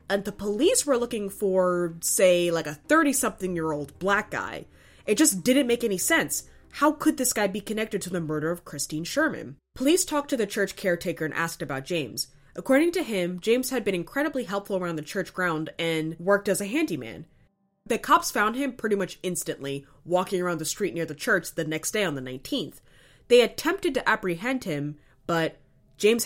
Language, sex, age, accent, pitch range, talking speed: English, female, 20-39, American, 170-250 Hz, 190 wpm